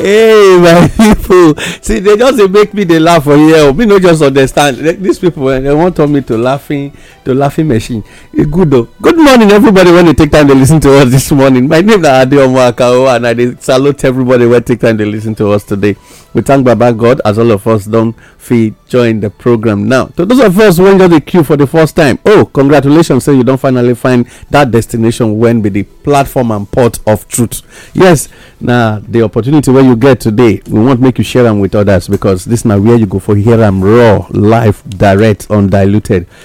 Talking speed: 225 wpm